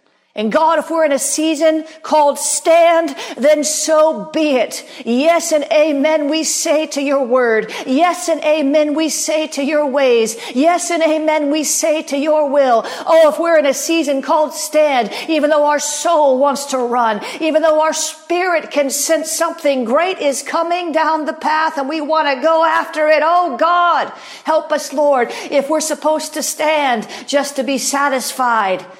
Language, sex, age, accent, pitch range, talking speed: English, female, 50-69, American, 280-320 Hz, 180 wpm